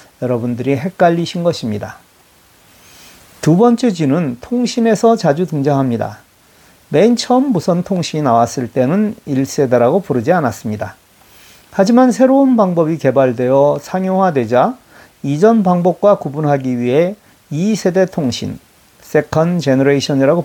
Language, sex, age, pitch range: Korean, male, 40-59, 130-200 Hz